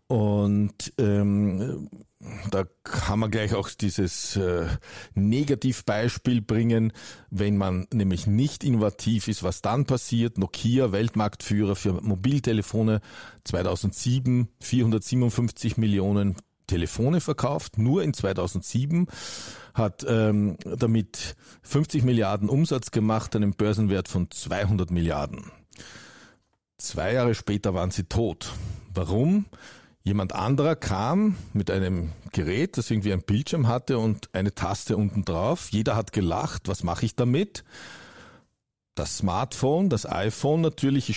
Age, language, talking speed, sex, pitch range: 50-69, German, 115 wpm, male, 100-125 Hz